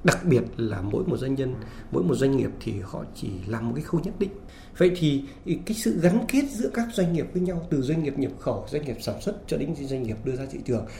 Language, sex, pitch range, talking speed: Vietnamese, male, 120-185 Hz, 265 wpm